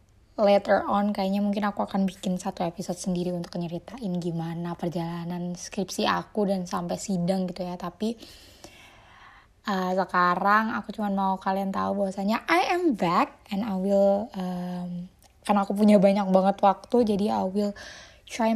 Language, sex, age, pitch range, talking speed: Indonesian, female, 20-39, 185-220 Hz, 150 wpm